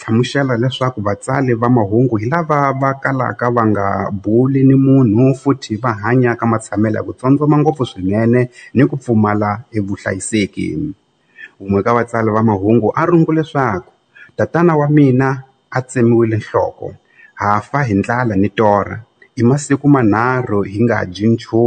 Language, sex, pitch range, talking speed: Portuguese, male, 105-125 Hz, 115 wpm